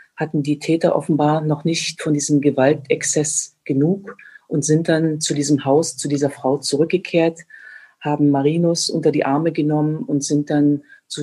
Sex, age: female, 40-59